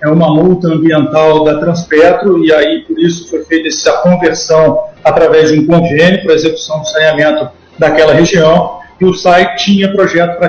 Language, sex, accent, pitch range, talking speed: Portuguese, male, Brazilian, 160-175 Hz, 175 wpm